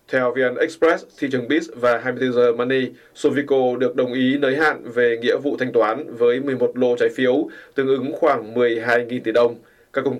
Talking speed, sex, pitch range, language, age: 195 wpm, male, 120-145 Hz, Vietnamese, 20-39